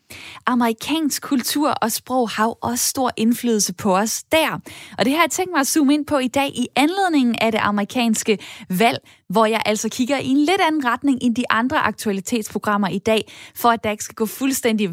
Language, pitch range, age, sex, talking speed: Danish, 210-275 Hz, 10-29, female, 210 wpm